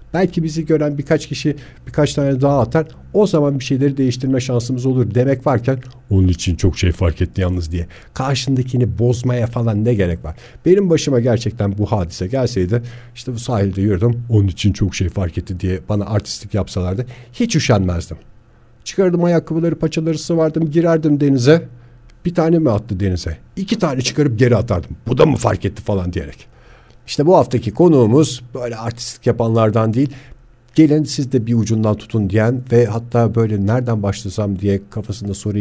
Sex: male